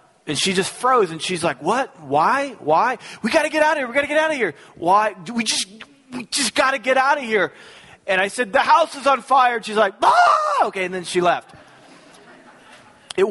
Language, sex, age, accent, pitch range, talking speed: English, male, 30-49, American, 140-190 Hz, 240 wpm